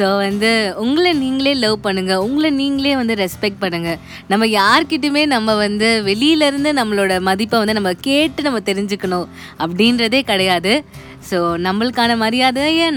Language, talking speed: Tamil, 130 wpm